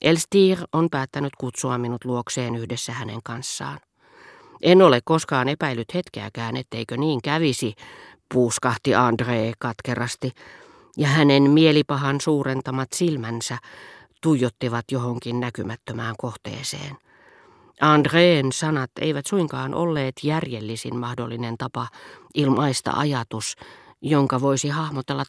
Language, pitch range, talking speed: Finnish, 120-155 Hz, 100 wpm